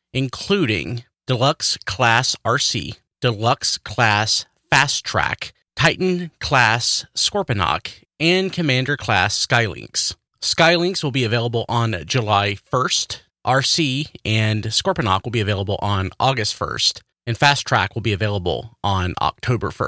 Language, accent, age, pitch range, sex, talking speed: English, American, 30-49, 100-125 Hz, male, 120 wpm